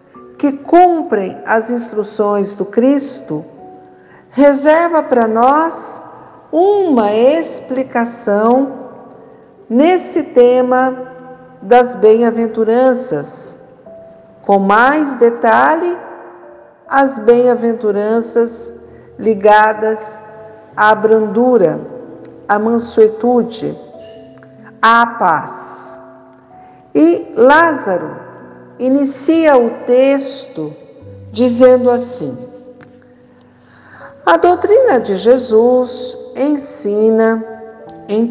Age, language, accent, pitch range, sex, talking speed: 50-69, Portuguese, Brazilian, 215-270 Hz, female, 65 wpm